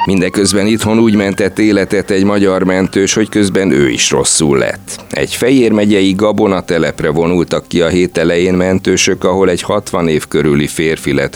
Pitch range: 75-100 Hz